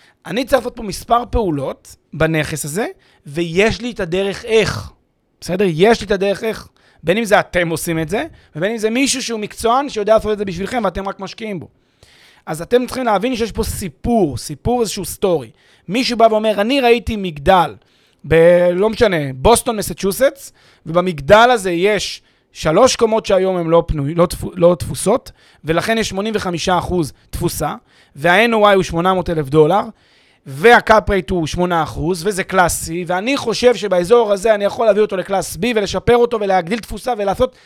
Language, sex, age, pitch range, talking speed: Hebrew, male, 30-49, 165-225 Hz, 165 wpm